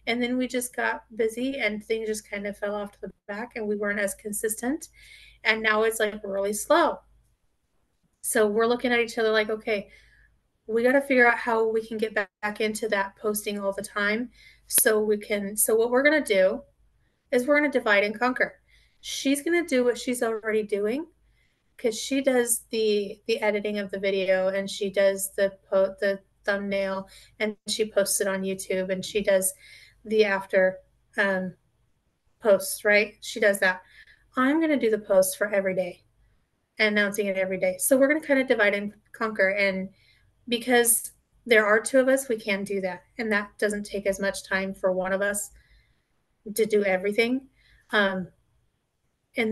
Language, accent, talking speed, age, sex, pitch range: English, American, 190 wpm, 30-49, female, 195-230 Hz